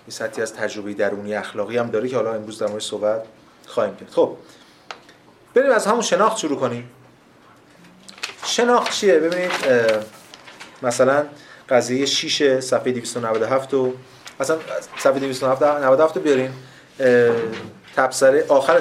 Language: Persian